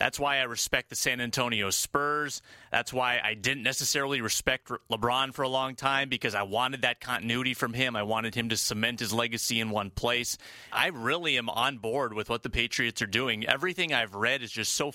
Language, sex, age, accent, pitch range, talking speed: English, male, 30-49, American, 110-135 Hz, 215 wpm